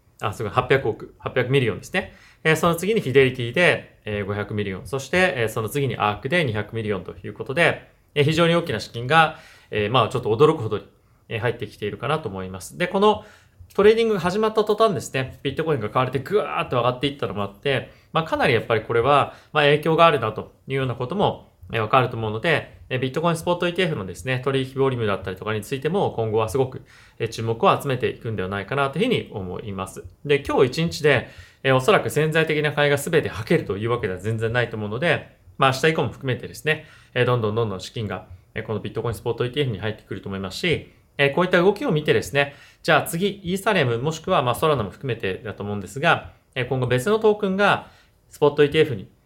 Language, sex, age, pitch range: Japanese, male, 30-49, 110-155 Hz